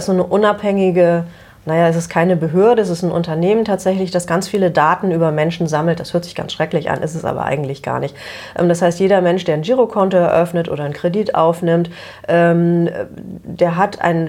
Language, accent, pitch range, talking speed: German, German, 160-190 Hz, 195 wpm